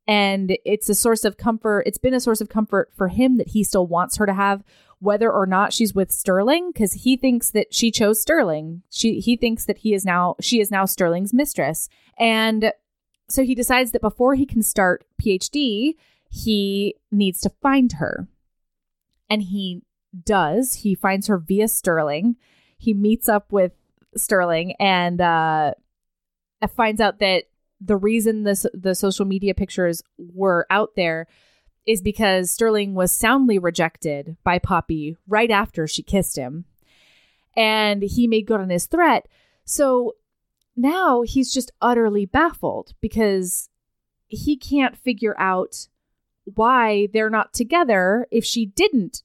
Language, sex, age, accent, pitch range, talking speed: English, female, 20-39, American, 190-245 Hz, 155 wpm